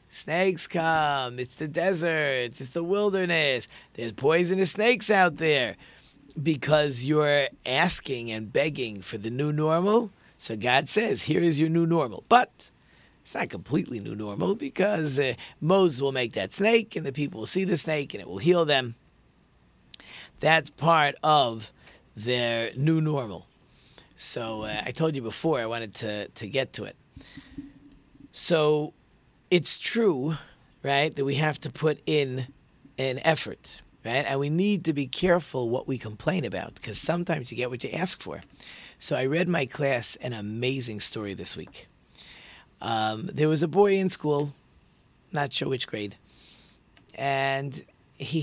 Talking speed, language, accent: 160 wpm, English, American